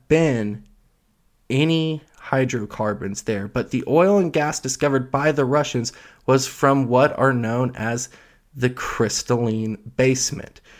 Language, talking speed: English, 120 wpm